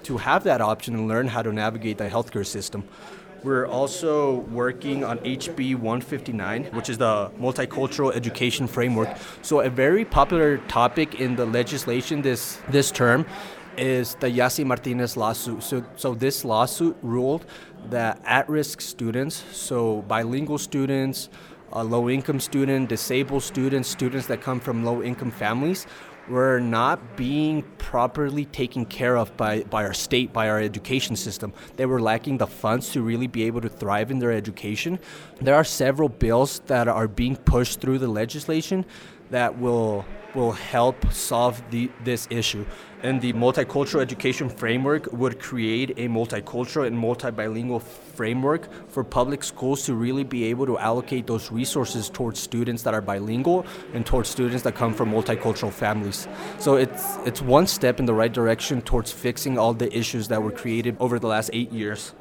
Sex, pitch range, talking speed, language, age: male, 115-135 Hz, 160 wpm, English, 20-39